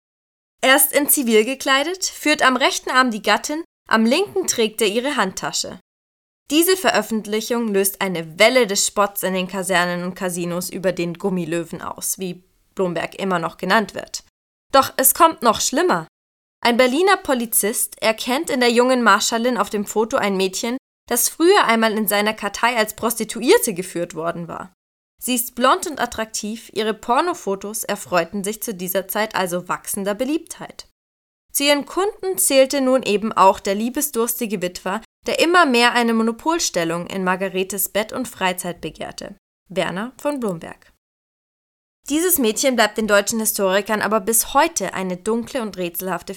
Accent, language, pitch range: German, German, 195-255 Hz